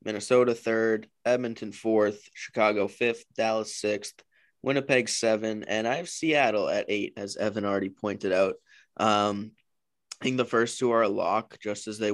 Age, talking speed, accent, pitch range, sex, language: 20-39, 160 wpm, American, 100-115 Hz, male, English